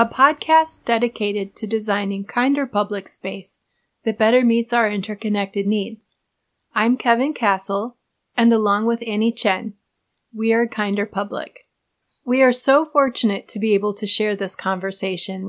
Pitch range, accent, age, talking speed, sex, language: 205-235 Hz, American, 30-49, 145 wpm, female, English